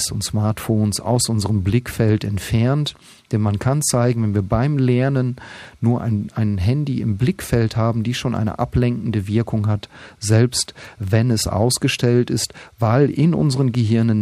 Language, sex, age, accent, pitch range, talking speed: German, male, 40-59, German, 105-125 Hz, 150 wpm